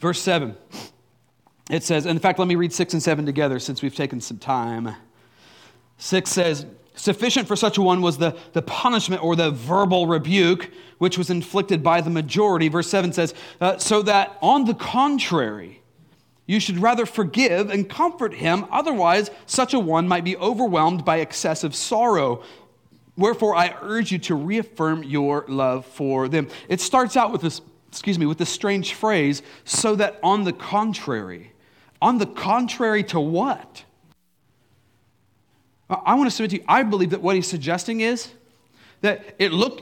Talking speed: 170 wpm